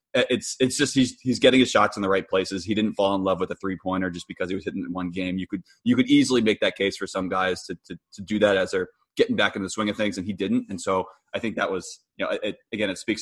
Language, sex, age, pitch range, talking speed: English, male, 20-39, 95-120 Hz, 320 wpm